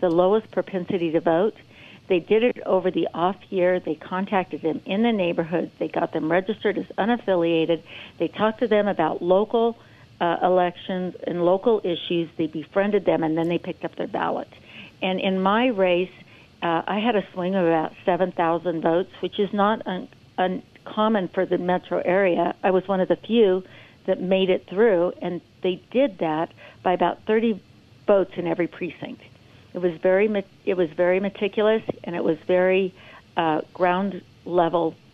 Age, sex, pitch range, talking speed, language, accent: 60-79, female, 170-205 Hz, 170 wpm, English, American